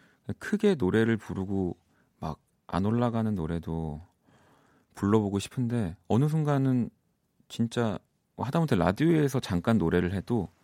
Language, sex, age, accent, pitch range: Korean, male, 40-59, native, 90-125 Hz